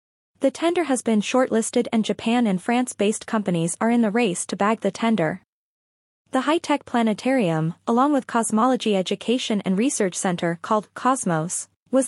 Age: 20-39